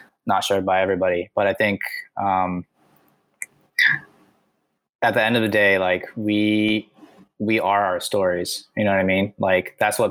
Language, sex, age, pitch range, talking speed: English, male, 20-39, 95-105 Hz, 165 wpm